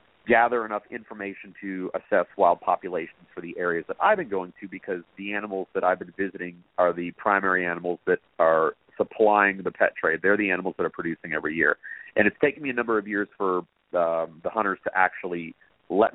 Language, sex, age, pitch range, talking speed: English, male, 40-59, 85-105 Hz, 205 wpm